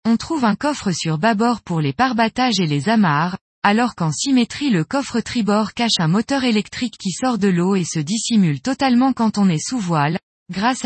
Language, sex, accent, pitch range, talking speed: French, female, French, 180-245 Hz, 200 wpm